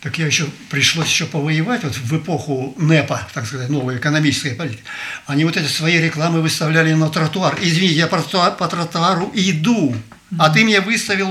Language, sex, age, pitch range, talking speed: Russian, male, 50-69, 150-205 Hz, 170 wpm